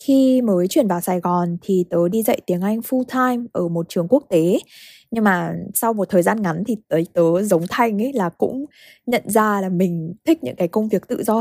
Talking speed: 230 wpm